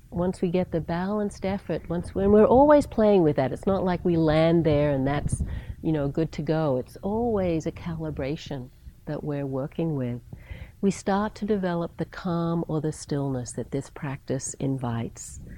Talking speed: 185 wpm